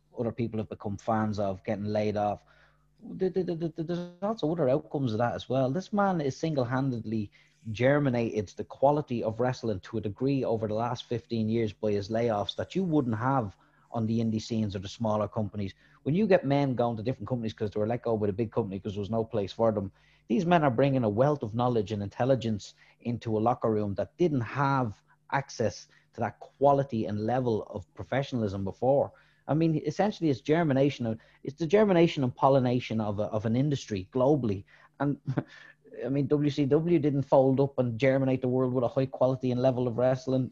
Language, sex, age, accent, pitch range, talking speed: English, male, 30-49, Irish, 110-140 Hz, 200 wpm